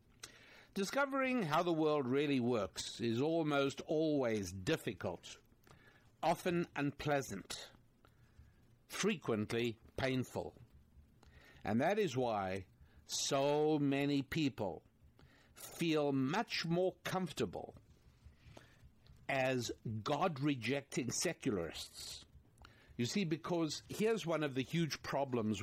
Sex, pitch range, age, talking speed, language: male, 120-165 Hz, 60-79, 85 wpm, English